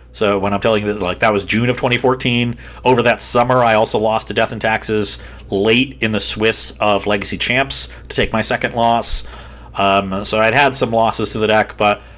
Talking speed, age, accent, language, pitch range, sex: 215 wpm, 40-59, American, English, 95-115 Hz, male